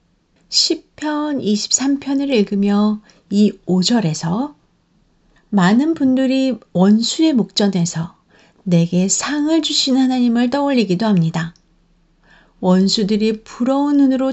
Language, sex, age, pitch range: Korean, female, 50-69, 180-260 Hz